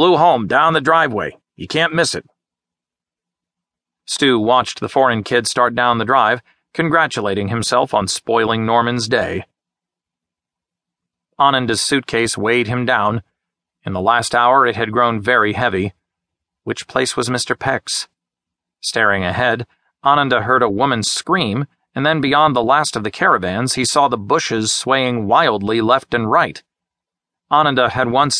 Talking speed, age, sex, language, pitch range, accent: 150 wpm, 40-59, male, English, 110-135 Hz, American